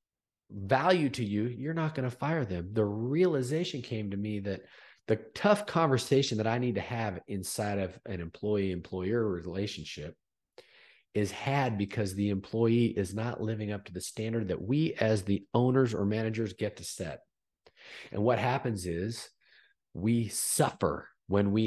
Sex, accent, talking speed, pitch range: male, American, 160 wpm, 100-130 Hz